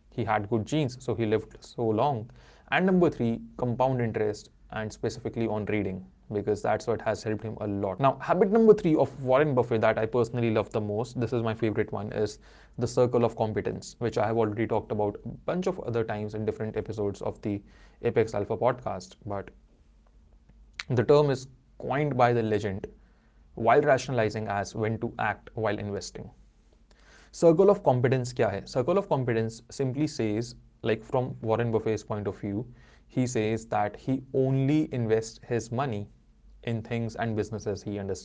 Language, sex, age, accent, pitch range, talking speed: Hindi, male, 20-39, native, 105-125 Hz, 150 wpm